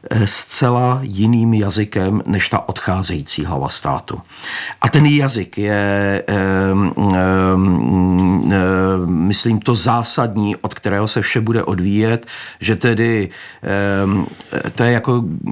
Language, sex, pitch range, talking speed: Czech, male, 105-125 Hz, 120 wpm